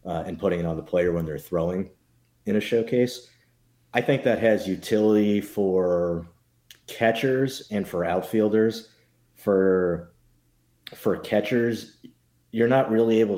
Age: 30-49